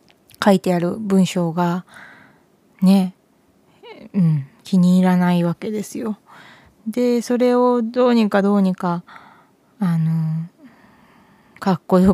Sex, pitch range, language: female, 175-215 Hz, Japanese